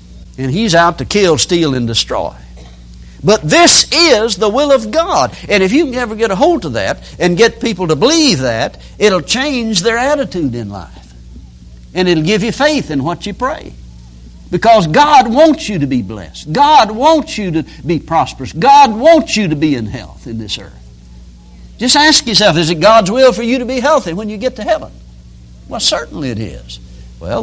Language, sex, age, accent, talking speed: English, male, 60-79, American, 200 wpm